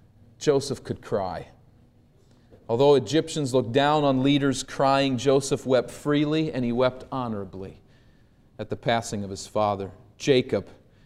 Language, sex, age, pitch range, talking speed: English, male, 40-59, 130-160 Hz, 130 wpm